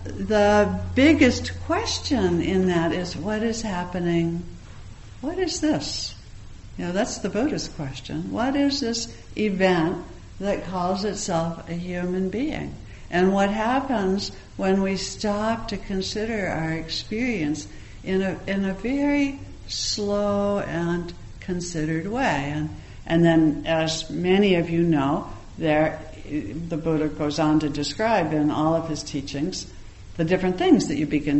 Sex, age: female, 60-79